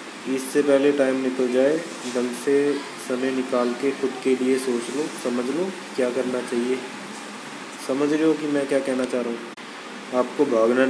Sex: male